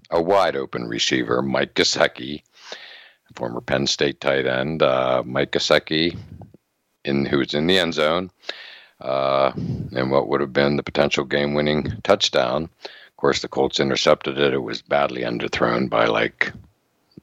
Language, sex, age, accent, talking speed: English, male, 60-79, American, 145 wpm